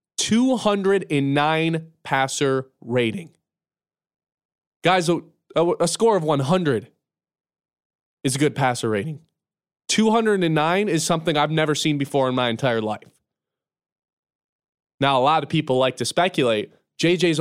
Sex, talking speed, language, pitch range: male, 120 wpm, English, 140-185 Hz